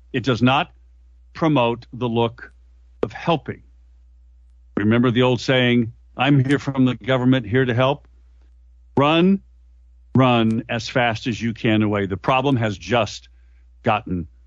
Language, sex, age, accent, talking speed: English, male, 50-69, American, 135 wpm